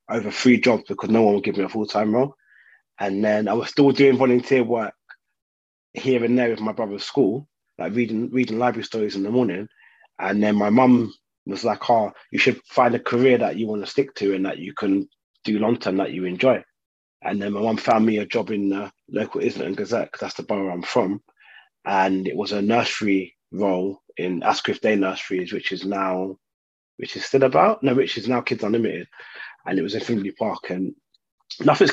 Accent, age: British, 20-39